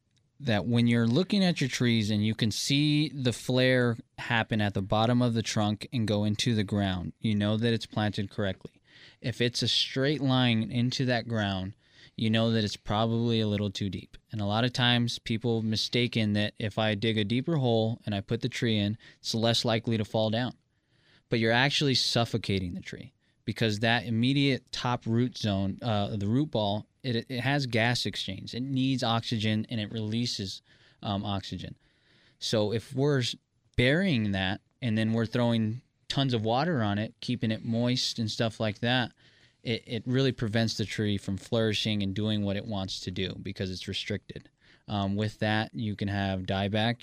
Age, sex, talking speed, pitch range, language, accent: 20-39, male, 190 wpm, 105-120 Hz, English, American